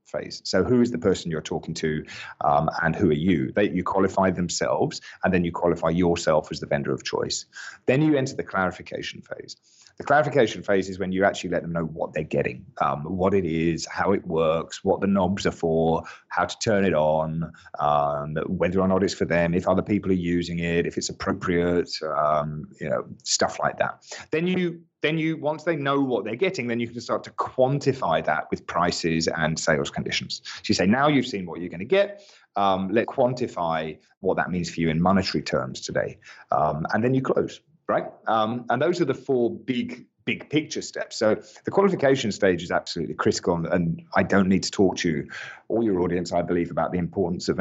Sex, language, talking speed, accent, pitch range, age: male, English, 215 wpm, British, 85-125 Hz, 30-49